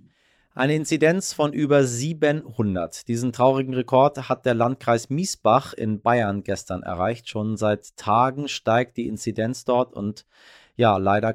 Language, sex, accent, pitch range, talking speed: German, male, German, 110-135 Hz, 135 wpm